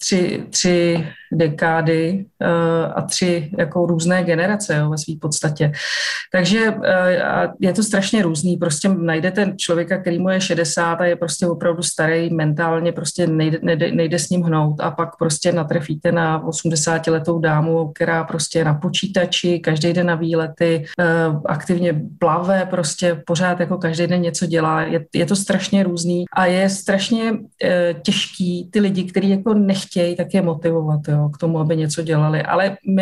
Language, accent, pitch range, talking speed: Czech, native, 165-185 Hz, 165 wpm